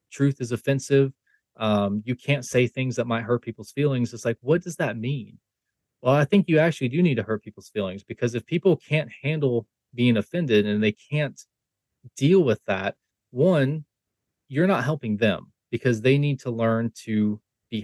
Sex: male